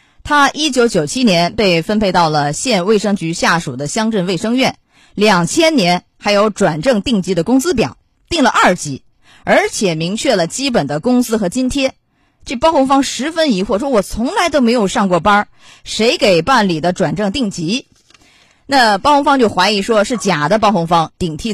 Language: Chinese